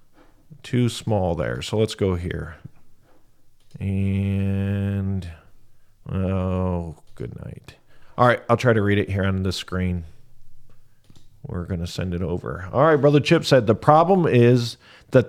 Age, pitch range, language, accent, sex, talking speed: 50-69, 110-145 Hz, English, American, male, 145 wpm